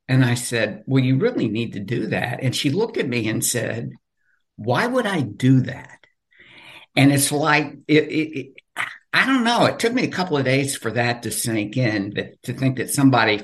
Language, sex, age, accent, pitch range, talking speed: English, male, 60-79, American, 110-150 Hz, 195 wpm